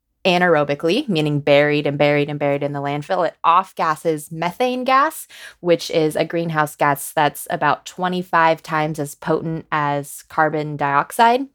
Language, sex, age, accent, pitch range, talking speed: English, female, 20-39, American, 150-185 Hz, 145 wpm